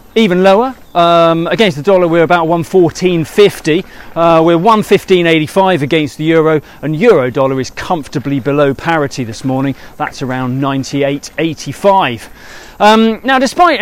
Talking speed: 130 wpm